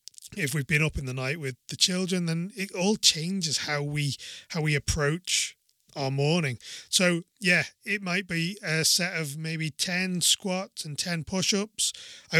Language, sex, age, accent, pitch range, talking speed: English, male, 30-49, British, 150-190 Hz, 175 wpm